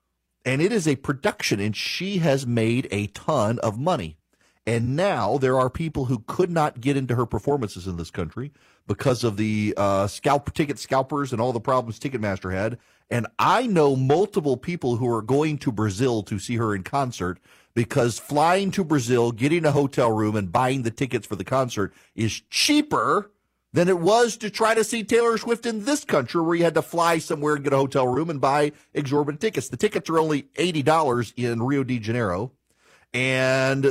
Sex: male